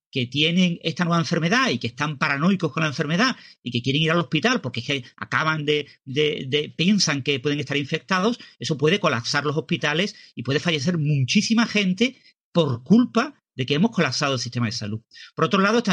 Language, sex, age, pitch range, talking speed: Spanish, male, 40-59, 125-170 Hz, 200 wpm